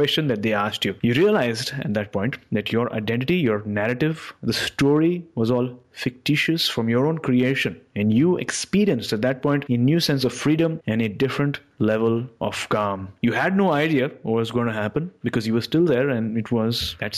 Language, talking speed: English, 205 wpm